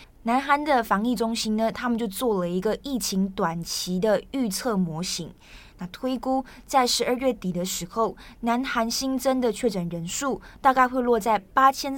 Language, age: Chinese, 20-39